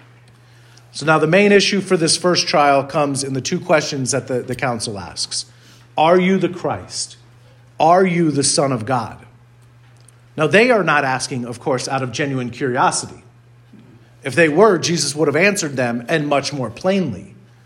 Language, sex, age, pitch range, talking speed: English, male, 40-59, 120-155 Hz, 175 wpm